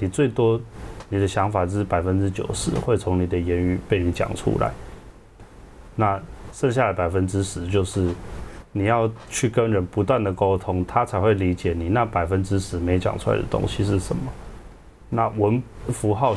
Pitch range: 90-110 Hz